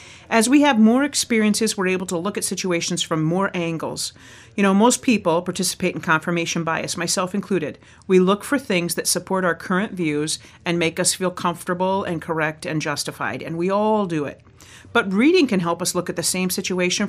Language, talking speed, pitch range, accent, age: English, 200 wpm, 160-205 Hz, American, 40-59